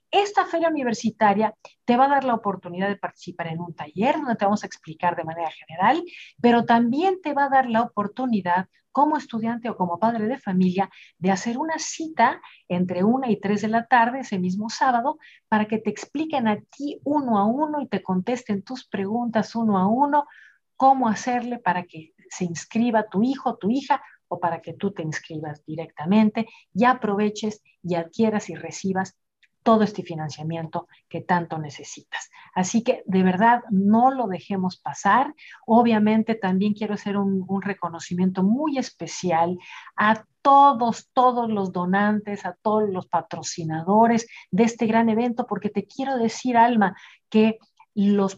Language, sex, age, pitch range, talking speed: Spanish, female, 50-69, 185-245 Hz, 165 wpm